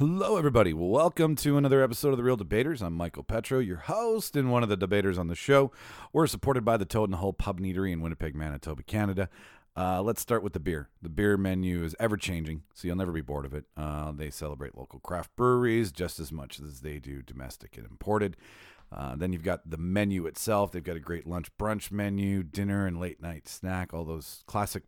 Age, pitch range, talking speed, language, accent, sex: 40-59, 80-105 Hz, 215 wpm, English, American, male